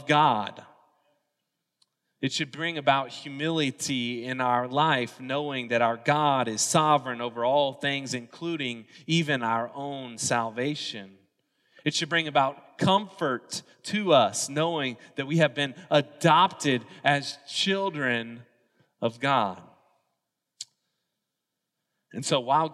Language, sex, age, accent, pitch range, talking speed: English, male, 20-39, American, 130-170 Hz, 115 wpm